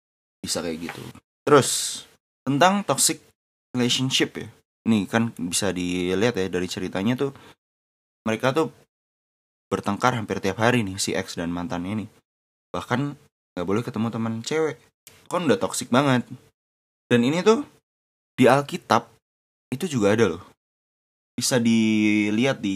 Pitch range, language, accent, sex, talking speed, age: 95-125 Hz, Indonesian, native, male, 130 wpm, 20-39